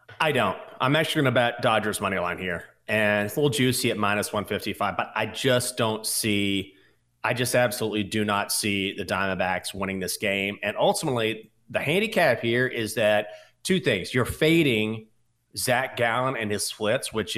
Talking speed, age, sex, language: 170 wpm, 30-49, male, English